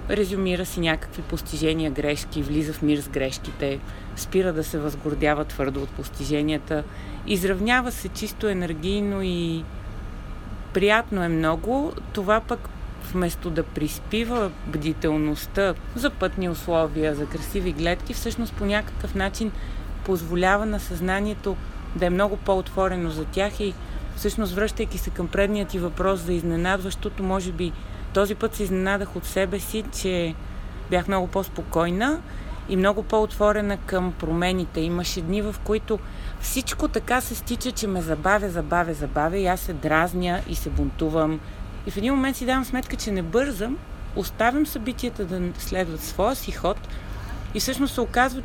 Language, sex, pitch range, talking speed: Bulgarian, female, 160-215 Hz, 150 wpm